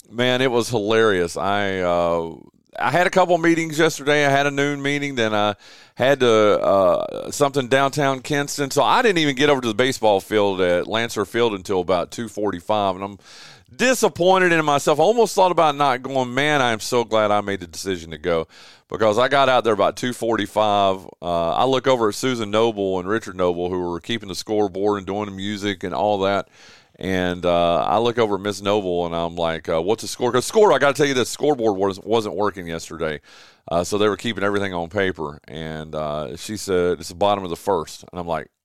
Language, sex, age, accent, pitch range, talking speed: English, male, 40-59, American, 95-140 Hz, 215 wpm